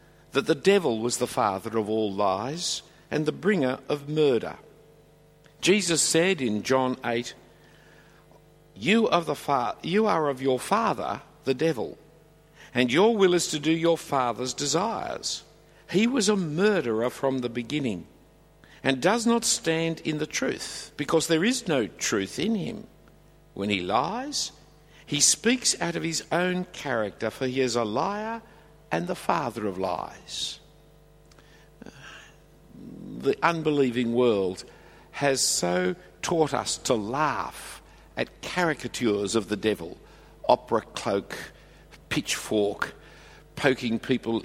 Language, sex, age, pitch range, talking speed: English, male, 60-79, 125-165 Hz, 130 wpm